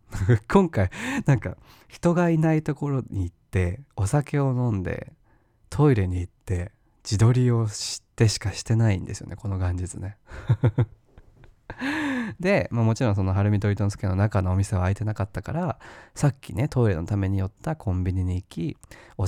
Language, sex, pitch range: Japanese, male, 95-130 Hz